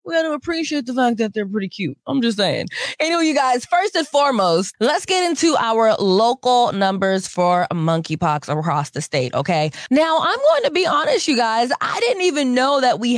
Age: 20-39